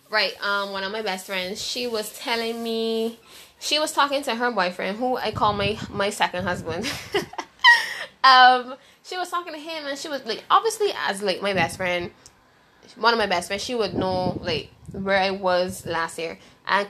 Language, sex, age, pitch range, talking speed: English, female, 10-29, 195-265 Hz, 195 wpm